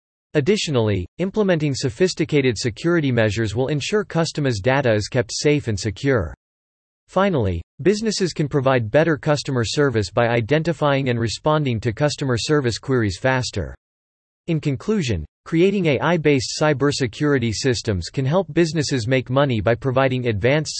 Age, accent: 40-59, American